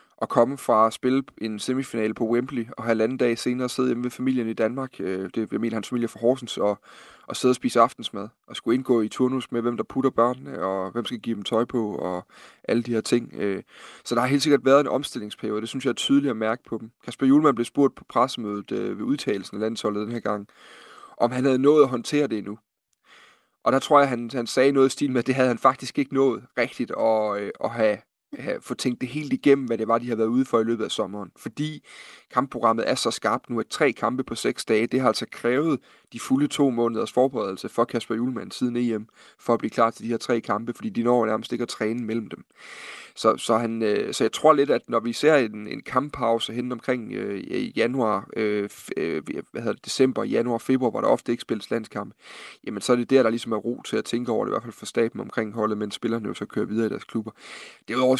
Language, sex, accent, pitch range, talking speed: Danish, male, native, 110-130 Hz, 250 wpm